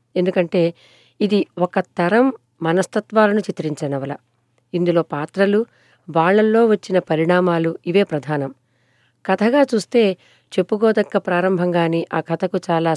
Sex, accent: female, native